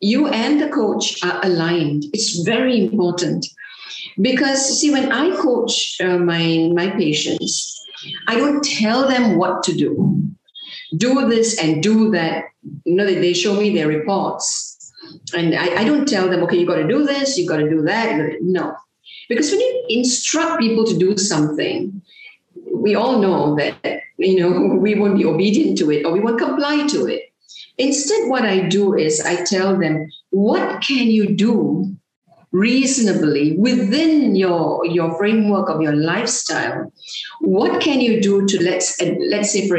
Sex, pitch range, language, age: female, 170-250 Hz, English, 50-69